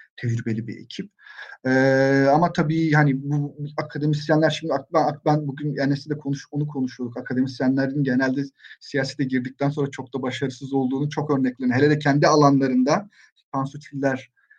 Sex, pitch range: male, 130-150 Hz